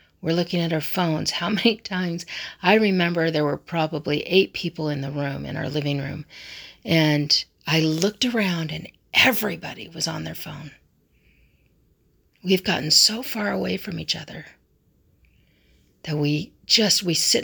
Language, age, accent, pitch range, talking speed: English, 40-59, American, 145-185 Hz, 155 wpm